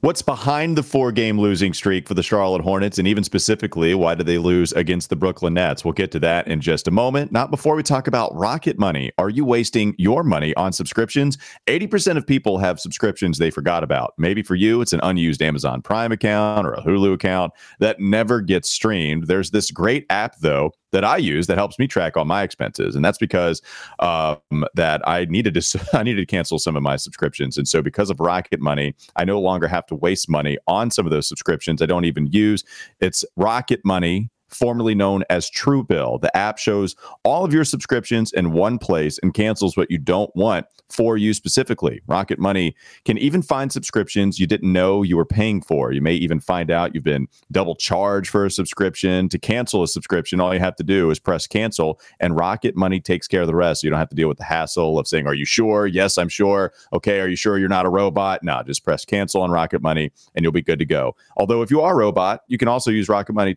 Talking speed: 225 wpm